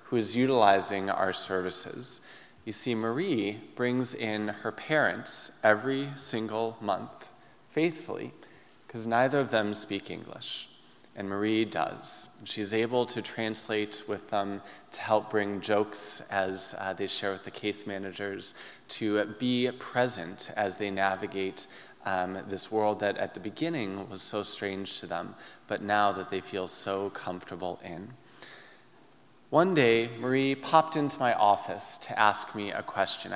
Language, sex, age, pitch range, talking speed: English, male, 20-39, 100-125 Hz, 145 wpm